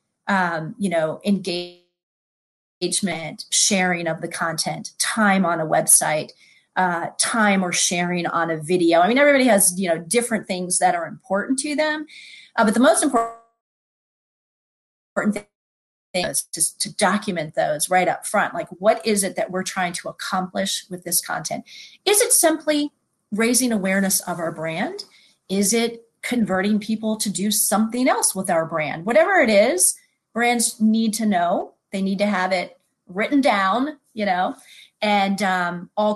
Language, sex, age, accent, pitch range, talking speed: English, female, 30-49, American, 180-230 Hz, 160 wpm